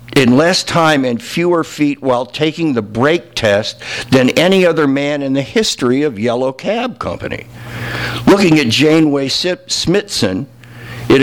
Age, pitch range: 60-79, 120-150 Hz